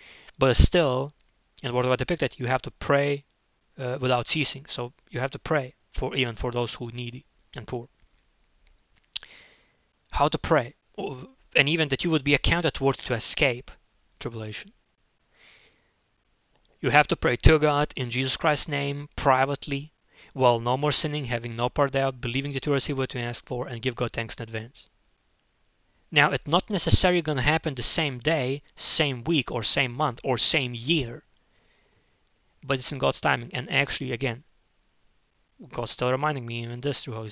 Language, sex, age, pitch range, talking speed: English, male, 20-39, 120-150 Hz, 175 wpm